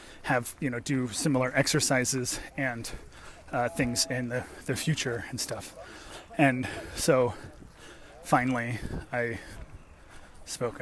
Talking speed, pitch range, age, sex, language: 110 wpm, 105-135 Hz, 30-49, male, English